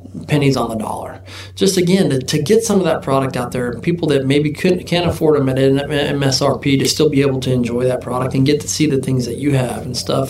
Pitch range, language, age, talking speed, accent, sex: 125-155 Hz, English, 20-39, 250 wpm, American, male